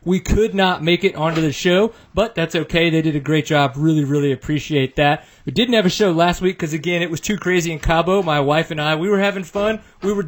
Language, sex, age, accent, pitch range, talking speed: English, male, 30-49, American, 150-185 Hz, 265 wpm